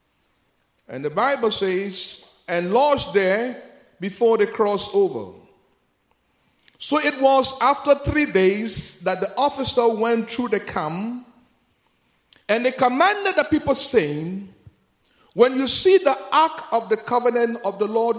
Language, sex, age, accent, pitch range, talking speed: English, male, 50-69, Nigerian, 195-280 Hz, 135 wpm